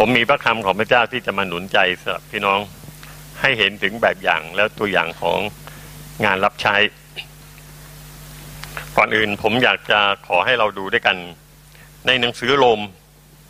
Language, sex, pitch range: Thai, male, 105-150 Hz